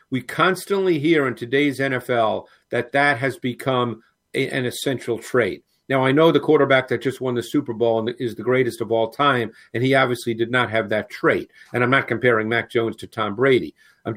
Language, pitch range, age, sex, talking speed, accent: English, 125-155 Hz, 50-69, male, 210 wpm, American